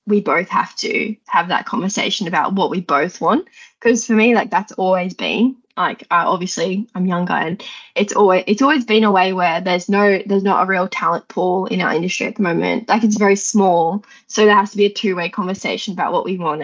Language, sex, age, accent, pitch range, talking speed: English, female, 10-29, Australian, 185-225 Hz, 225 wpm